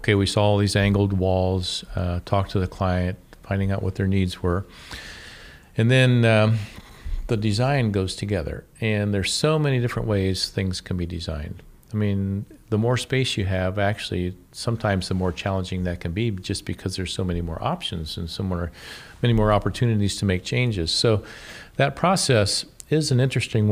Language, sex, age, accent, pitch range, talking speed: English, male, 50-69, American, 90-110 Hz, 180 wpm